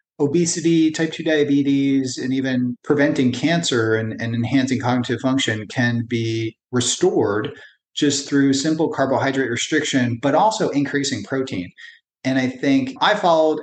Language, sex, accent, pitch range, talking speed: English, male, American, 125-160 Hz, 130 wpm